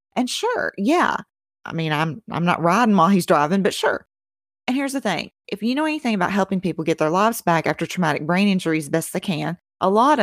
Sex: female